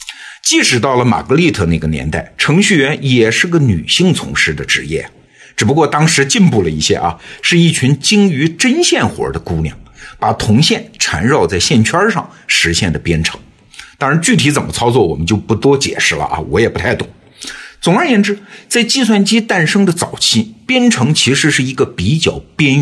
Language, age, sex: Chinese, 50-69, male